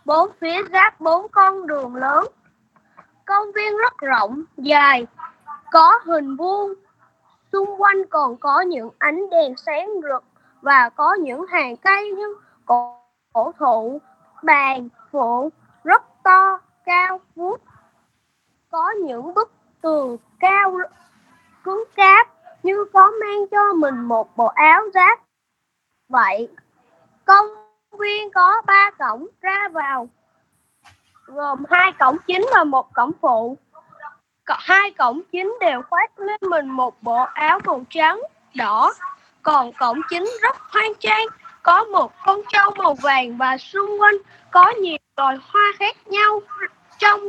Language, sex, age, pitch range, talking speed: Vietnamese, female, 20-39, 285-400 Hz, 135 wpm